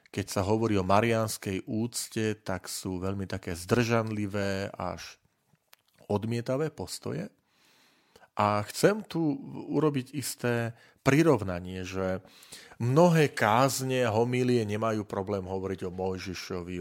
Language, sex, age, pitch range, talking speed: Slovak, male, 40-59, 100-125 Hz, 105 wpm